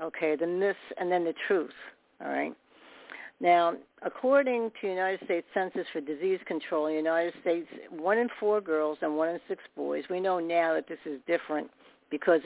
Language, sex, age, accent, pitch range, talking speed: English, female, 60-79, American, 155-205 Hz, 190 wpm